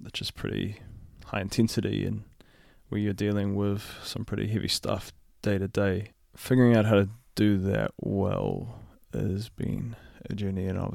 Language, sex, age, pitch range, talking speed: English, male, 20-39, 100-110 Hz, 170 wpm